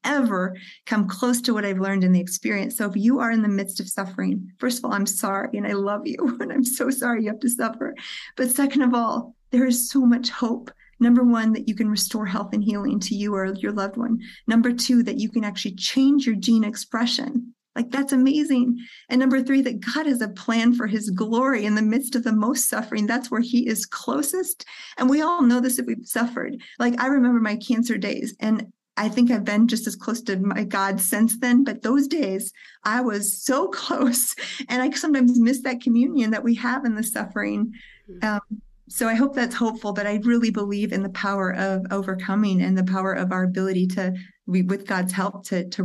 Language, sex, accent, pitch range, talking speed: English, female, American, 200-250 Hz, 220 wpm